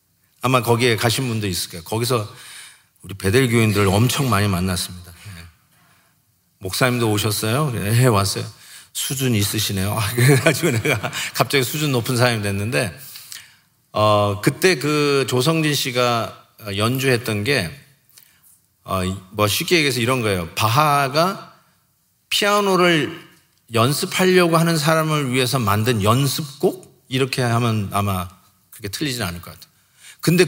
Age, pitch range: 40-59, 105-155 Hz